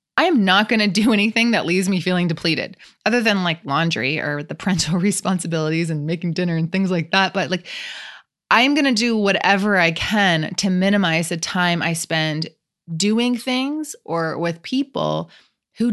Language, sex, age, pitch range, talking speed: English, female, 20-39, 165-205 Hz, 180 wpm